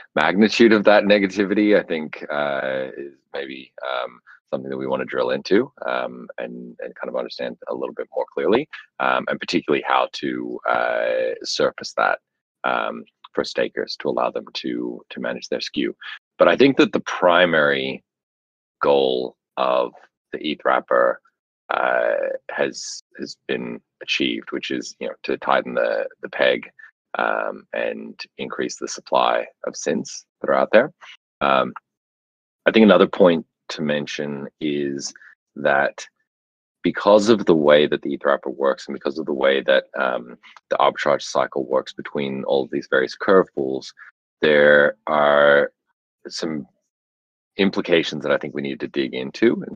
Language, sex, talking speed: English, male, 160 wpm